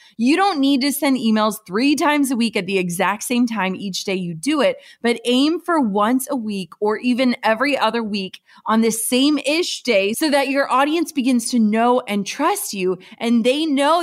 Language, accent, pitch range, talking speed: English, American, 205-275 Hz, 205 wpm